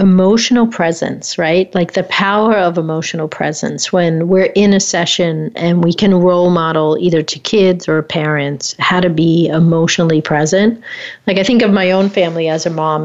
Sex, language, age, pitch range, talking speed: female, English, 40-59, 165-210 Hz, 180 wpm